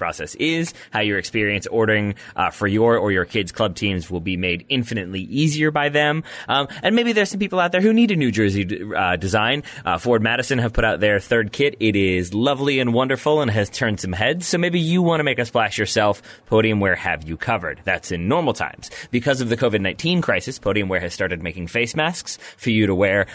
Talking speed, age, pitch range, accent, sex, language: 230 wpm, 30-49, 100-140 Hz, American, male, English